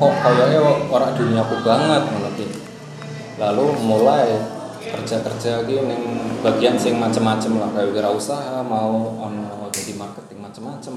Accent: native